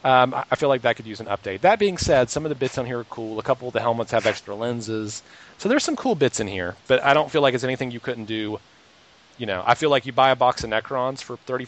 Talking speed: 295 wpm